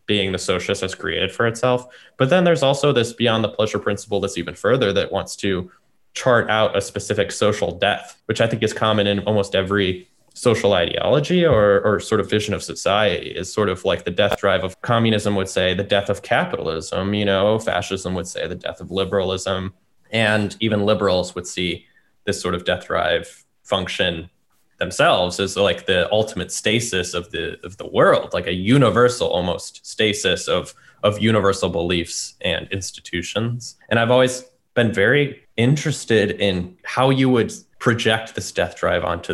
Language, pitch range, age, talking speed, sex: English, 95-120 Hz, 20-39, 180 wpm, male